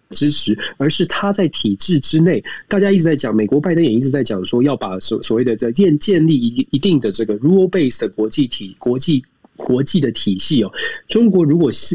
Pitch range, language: 115-150 Hz, Chinese